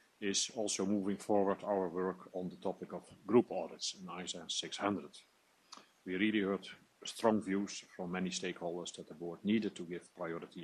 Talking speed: 170 wpm